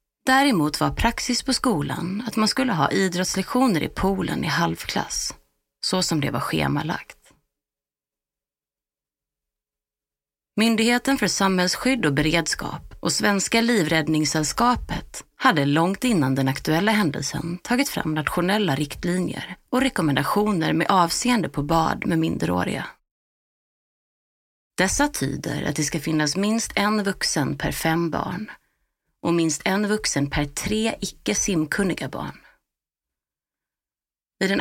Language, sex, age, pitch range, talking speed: Swedish, female, 30-49, 150-215 Hz, 115 wpm